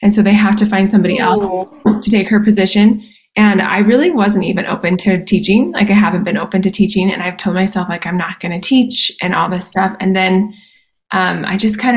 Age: 20-39